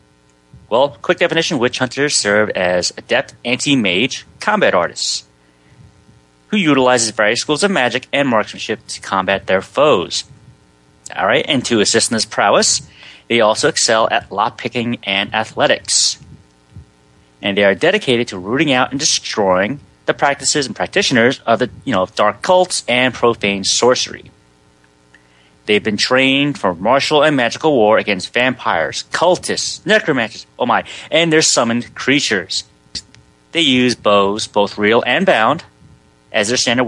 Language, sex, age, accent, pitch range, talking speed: English, male, 30-49, American, 95-130 Hz, 145 wpm